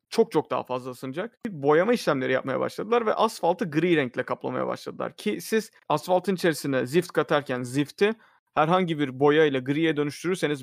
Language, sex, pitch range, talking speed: Turkish, male, 140-175 Hz, 155 wpm